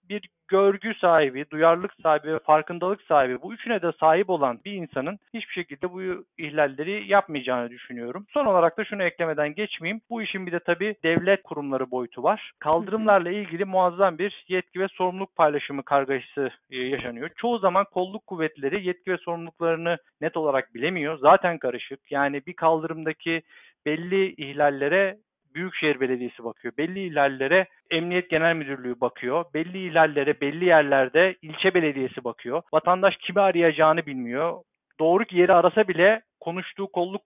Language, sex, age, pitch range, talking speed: Turkish, male, 50-69, 155-190 Hz, 140 wpm